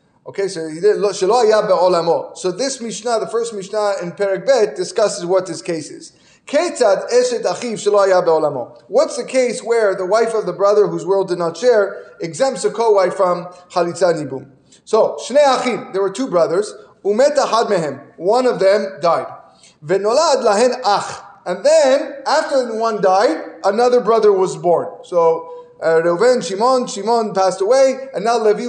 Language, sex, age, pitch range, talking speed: English, male, 20-39, 195-285 Hz, 135 wpm